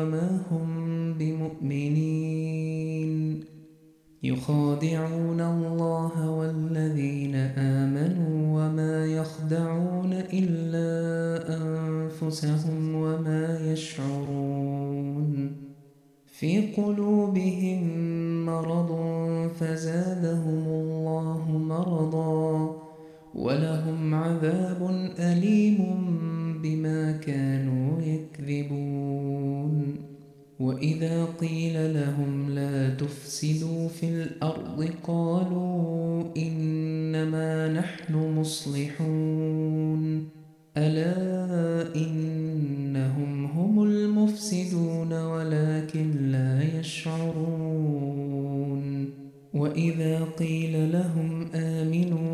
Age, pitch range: 20-39, 155-165 Hz